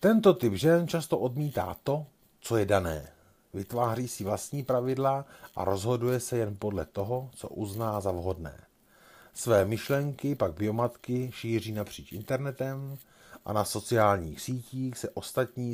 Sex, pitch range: male, 105-135 Hz